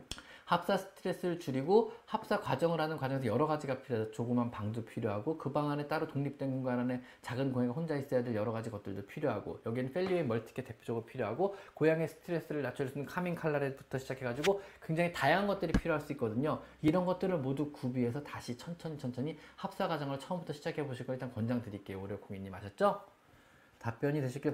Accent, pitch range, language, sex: native, 130-195 Hz, Korean, male